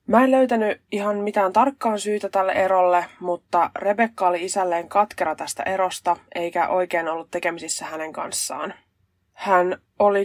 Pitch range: 170-200 Hz